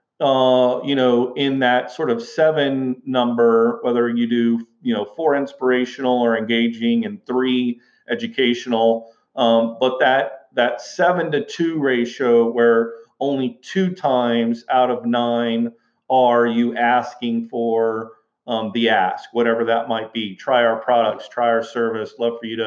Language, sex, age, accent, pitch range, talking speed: English, male, 40-59, American, 115-135 Hz, 150 wpm